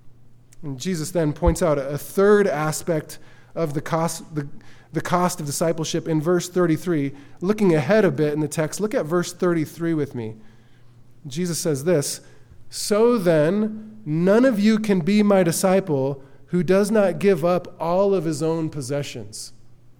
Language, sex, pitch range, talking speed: English, male, 145-195 Hz, 160 wpm